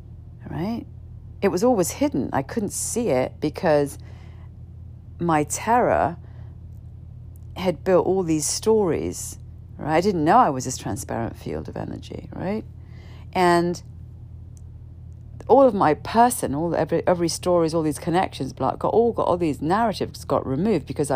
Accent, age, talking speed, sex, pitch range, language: British, 40-59, 145 wpm, female, 110-160 Hz, English